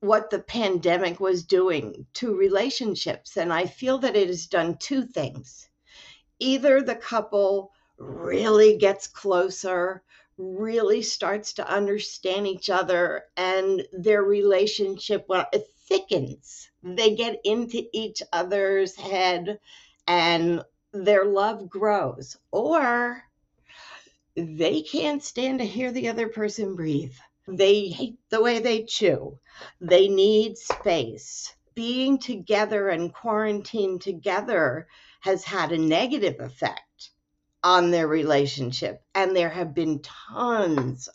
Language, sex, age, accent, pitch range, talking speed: English, female, 50-69, American, 180-230 Hz, 120 wpm